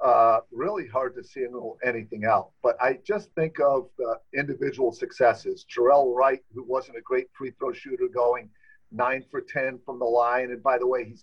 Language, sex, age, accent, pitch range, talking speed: English, male, 50-69, American, 135-205 Hz, 190 wpm